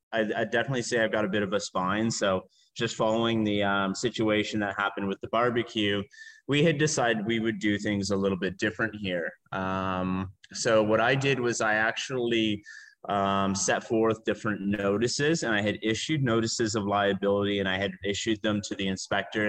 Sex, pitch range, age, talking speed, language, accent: male, 100-115 Hz, 30-49, 190 wpm, English, American